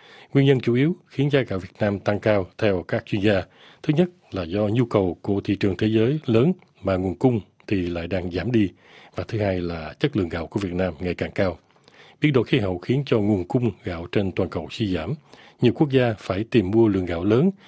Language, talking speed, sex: Vietnamese, 240 wpm, male